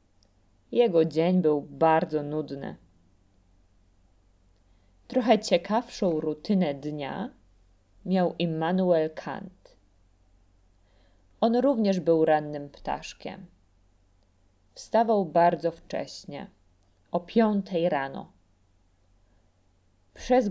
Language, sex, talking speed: Polish, female, 70 wpm